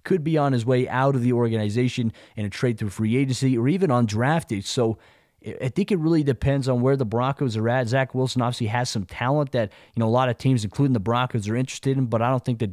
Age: 30-49